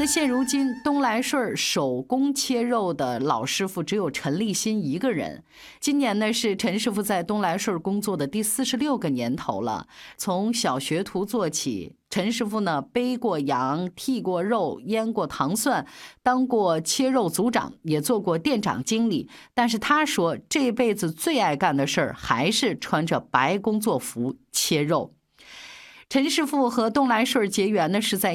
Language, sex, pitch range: Chinese, female, 180-255 Hz